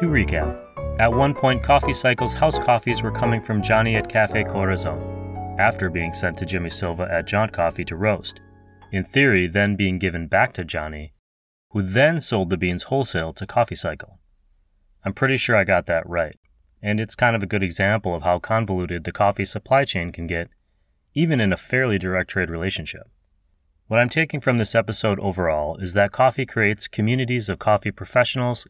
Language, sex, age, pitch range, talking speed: English, male, 30-49, 90-120 Hz, 185 wpm